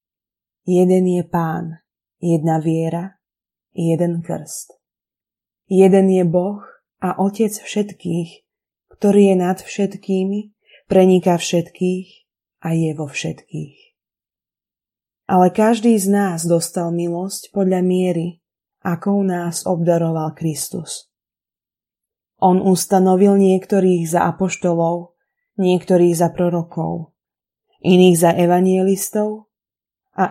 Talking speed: 95 wpm